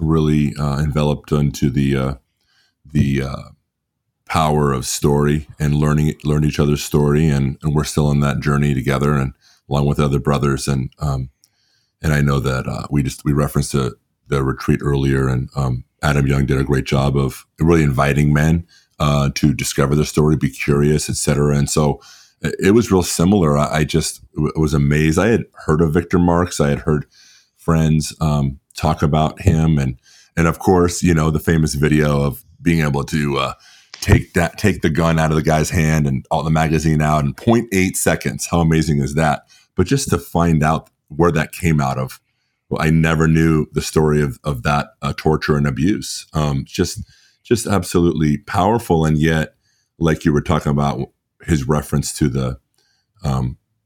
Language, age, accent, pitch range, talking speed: English, 30-49, American, 70-80 Hz, 185 wpm